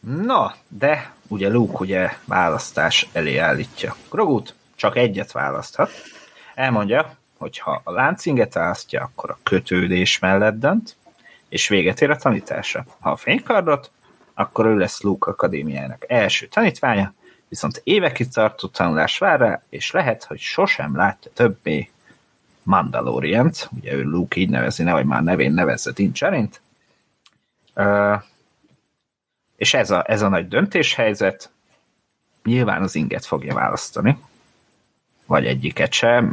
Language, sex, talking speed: Hungarian, male, 125 wpm